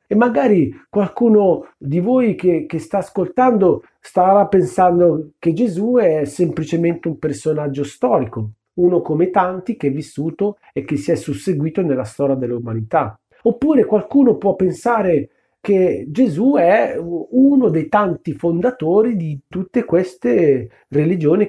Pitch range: 165-235 Hz